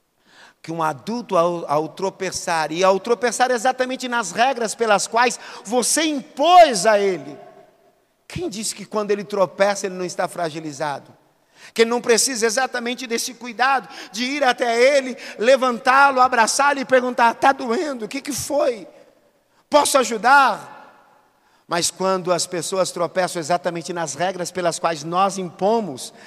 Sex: male